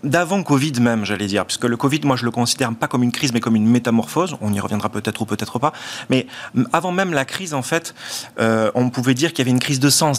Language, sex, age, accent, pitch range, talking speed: French, male, 30-49, French, 115-150 Hz, 265 wpm